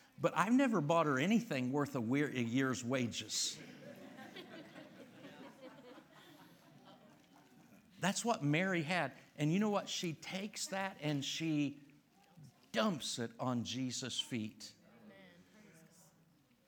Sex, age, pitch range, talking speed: male, 50-69, 135-180 Hz, 105 wpm